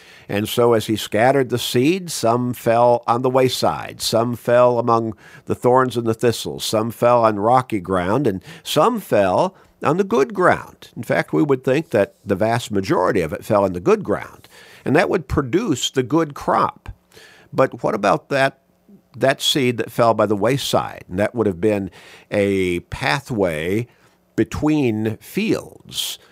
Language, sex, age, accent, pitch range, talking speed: English, male, 50-69, American, 100-125 Hz, 170 wpm